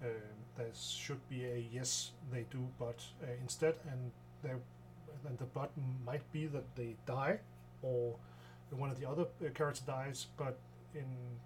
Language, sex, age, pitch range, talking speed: Danish, male, 40-59, 120-145 Hz, 155 wpm